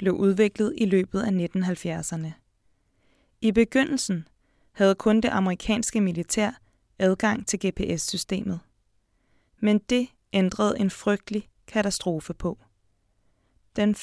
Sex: female